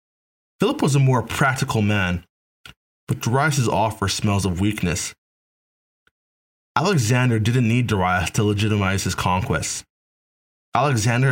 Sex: male